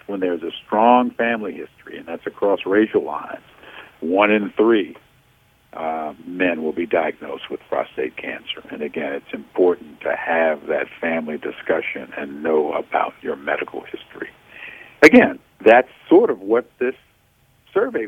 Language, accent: English, American